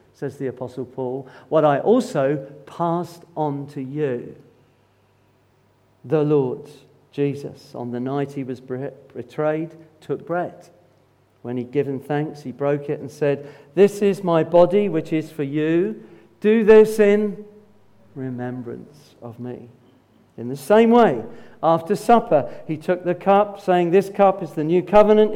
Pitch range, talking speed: 140-205 Hz, 145 wpm